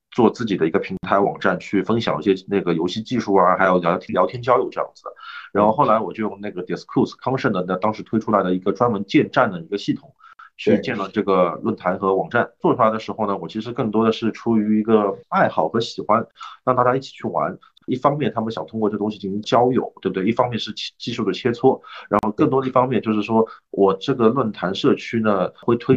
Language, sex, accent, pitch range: Chinese, male, native, 100-125 Hz